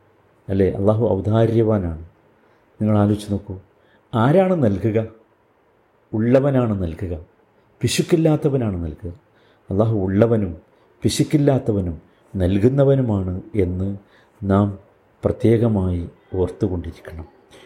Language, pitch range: Malayalam, 95-130 Hz